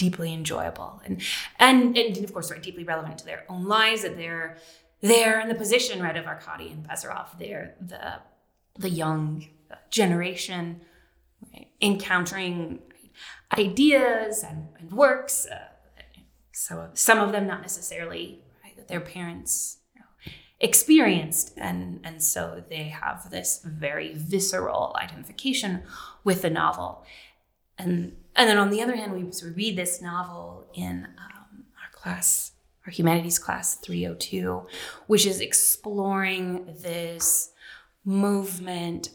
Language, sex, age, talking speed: English, female, 20-39, 130 wpm